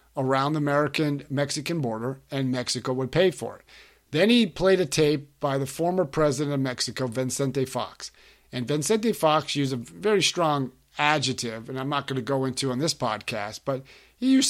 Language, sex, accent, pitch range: English, male, American, 130-155 Hz